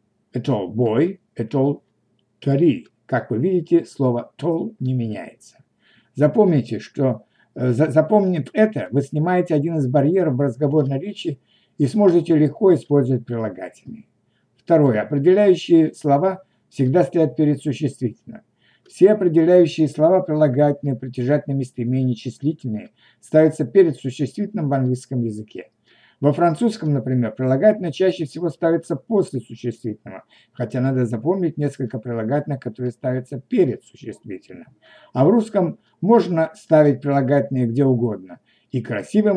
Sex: male